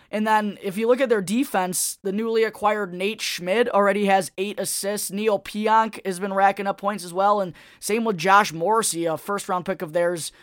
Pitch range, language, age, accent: 165-210 Hz, English, 20-39, American